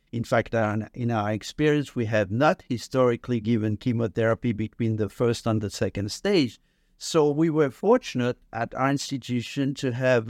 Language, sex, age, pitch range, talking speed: English, male, 60-79, 110-135 Hz, 155 wpm